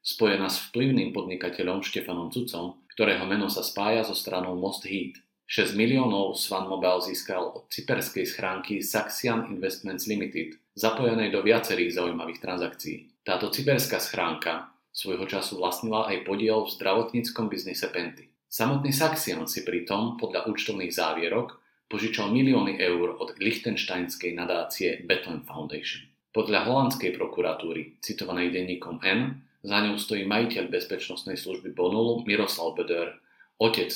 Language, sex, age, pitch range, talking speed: Slovak, male, 40-59, 90-115 Hz, 130 wpm